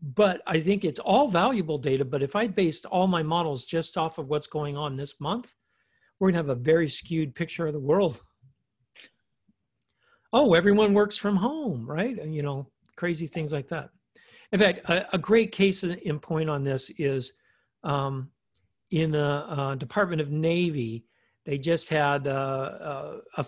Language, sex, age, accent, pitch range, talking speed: English, male, 50-69, American, 135-175 Hz, 170 wpm